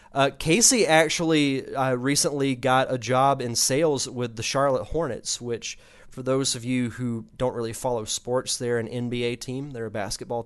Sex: male